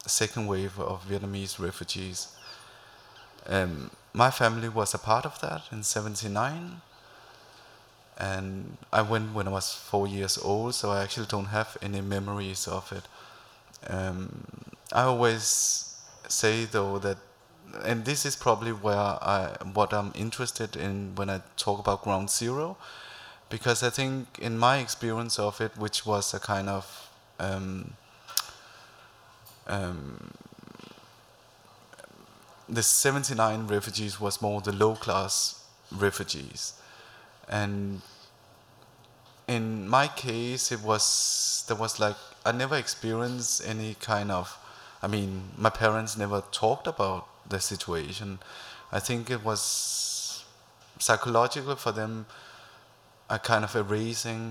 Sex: male